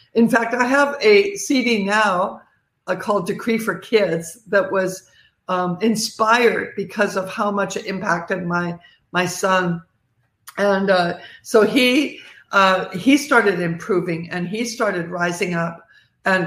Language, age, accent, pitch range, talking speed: English, 60-79, American, 185-230 Hz, 140 wpm